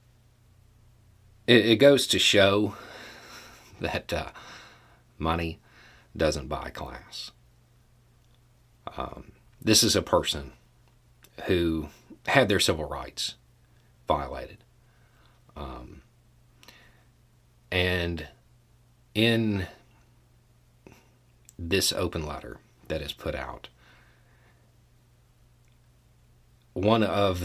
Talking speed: 70 wpm